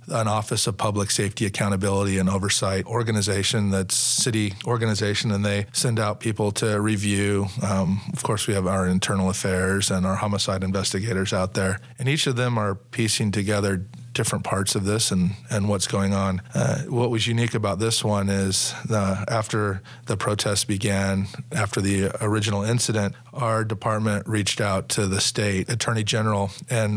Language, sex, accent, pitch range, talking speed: English, male, American, 100-115 Hz, 170 wpm